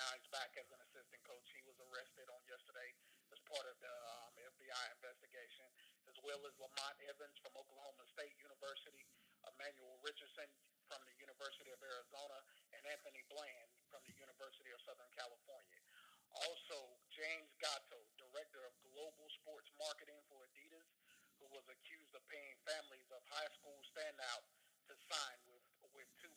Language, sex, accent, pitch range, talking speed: English, male, American, 140-165 Hz, 155 wpm